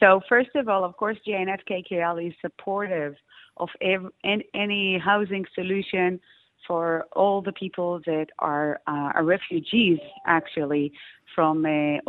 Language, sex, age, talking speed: English, female, 30-49, 130 wpm